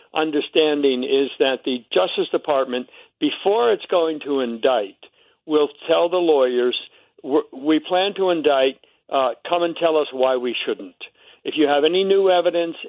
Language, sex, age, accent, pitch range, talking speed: English, male, 60-79, American, 130-195 Hz, 155 wpm